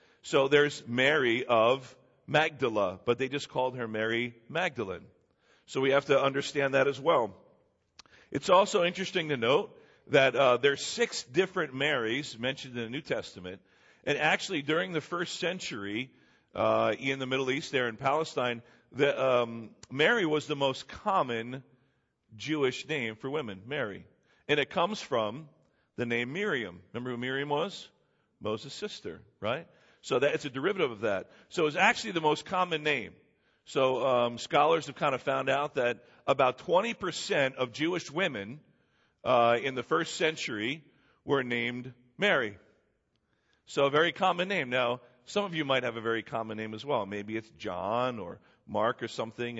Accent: American